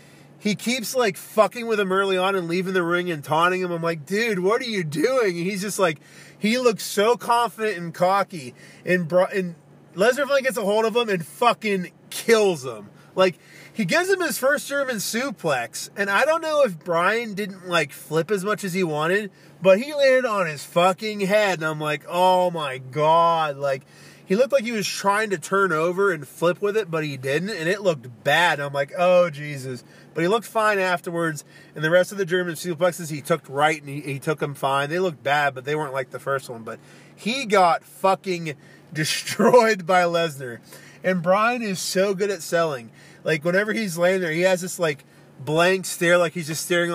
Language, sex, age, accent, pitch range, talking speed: English, male, 30-49, American, 155-200 Hz, 210 wpm